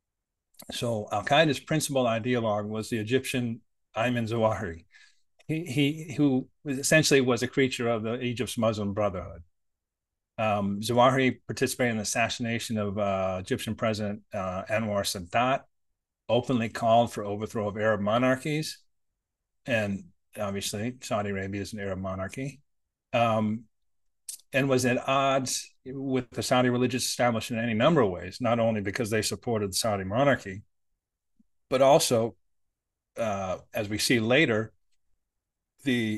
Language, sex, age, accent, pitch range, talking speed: English, male, 30-49, American, 100-125 Hz, 135 wpm